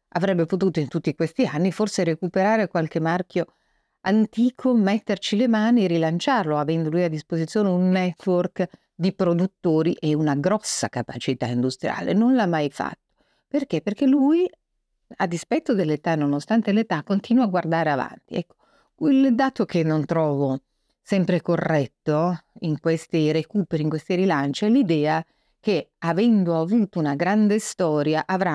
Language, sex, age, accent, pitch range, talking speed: Italian, female, 50-69, native, 160-215 Hz, 145 wpm